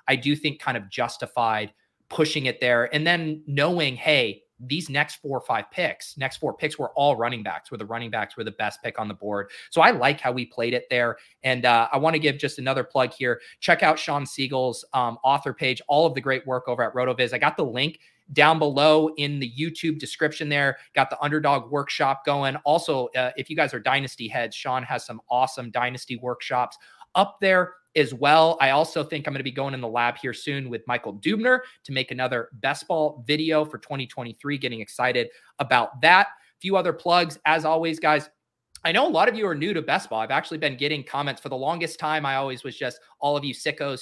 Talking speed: 225 wpm